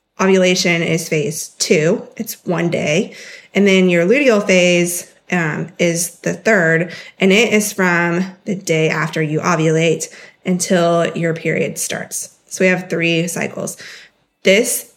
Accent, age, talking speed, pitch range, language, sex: American, 20-39, 140 wpm, 175-210 Hz, English, female